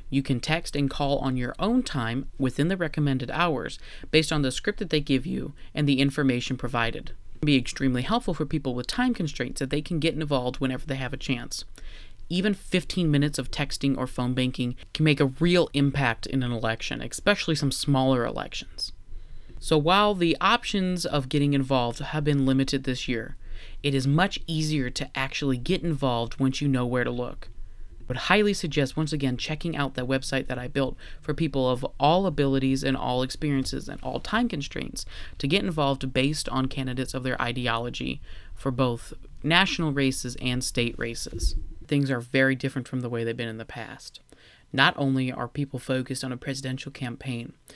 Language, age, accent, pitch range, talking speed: English, 30-49, American, 125-150 Hz, 190 wpm